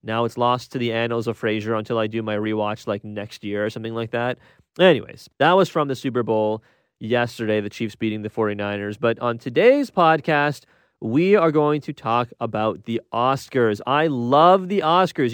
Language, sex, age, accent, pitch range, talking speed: English, male, 30-49, American, 115-160 Hz, 190 wpm